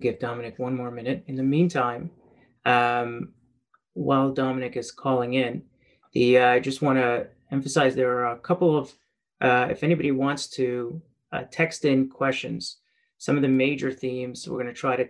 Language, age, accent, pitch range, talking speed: English, 30-49, American, 120-135 Hz, 175 wpm